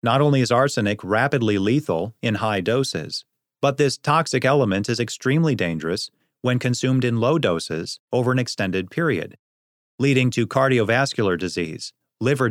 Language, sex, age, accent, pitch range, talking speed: English, male, 30-49, American, 105-140 Hz, 145 wpm